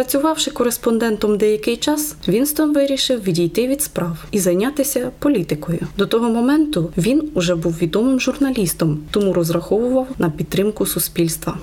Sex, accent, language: female, native, Ukrainian